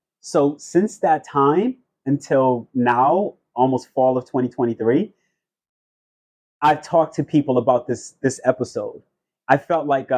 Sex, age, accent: male, 30-49, American